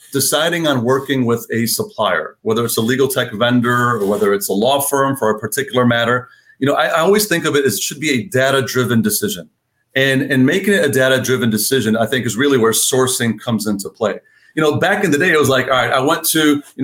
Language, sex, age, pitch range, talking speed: English, male, 40-59, 120-145 Hz, 240 wpm